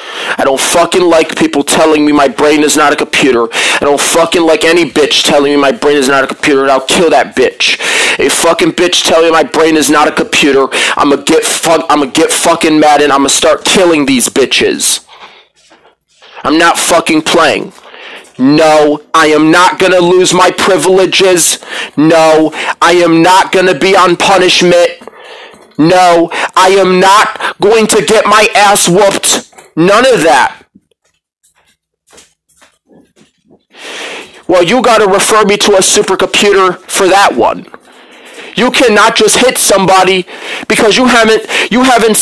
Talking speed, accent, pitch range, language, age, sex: 160 wpm, American, 160-250 Hz, English, 30-49, male